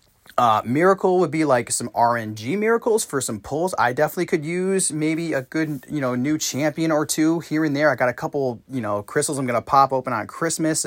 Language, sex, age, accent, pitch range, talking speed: English, male, 30-49, American, 120-160 Hz, 225 wpm